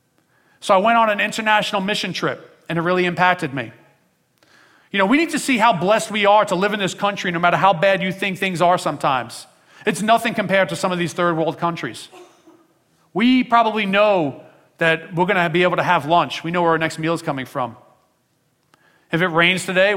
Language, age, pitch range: English, 40-59, 165-195 Hz